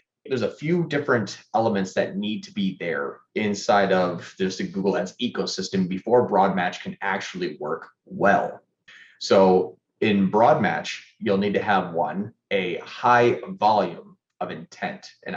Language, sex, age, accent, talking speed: English, male, 30-49, American, 150 wpm